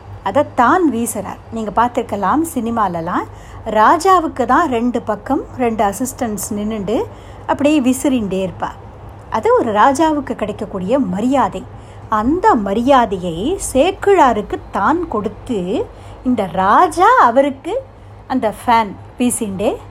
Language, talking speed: Tamil, 95 wpm